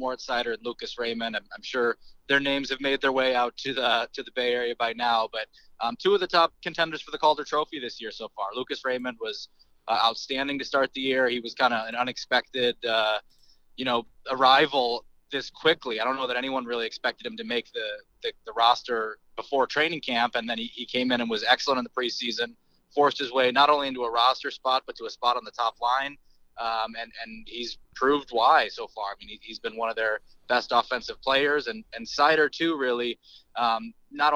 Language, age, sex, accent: English, 20-39, male, American